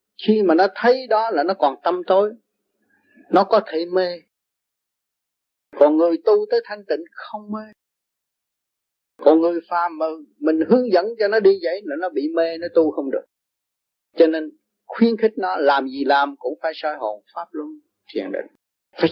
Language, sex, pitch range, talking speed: Vietnamese, male, 185-285 Hz, 175 wpm